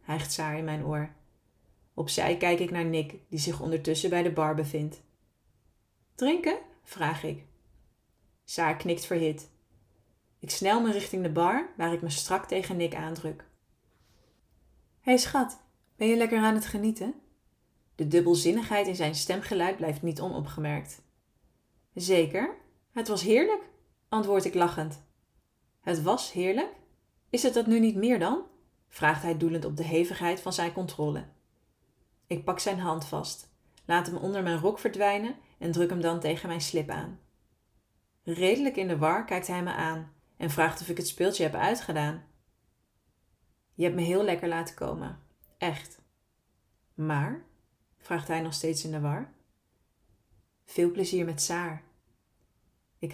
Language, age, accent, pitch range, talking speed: Dutch, 20-39, Dutch, 155-190 Hz, 150 wpm